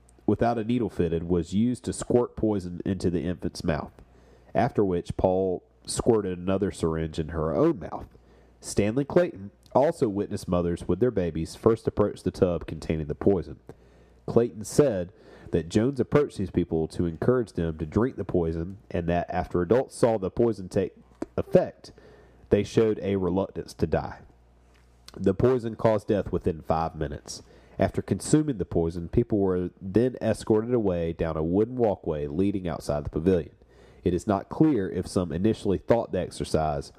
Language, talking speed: English, 165 wpm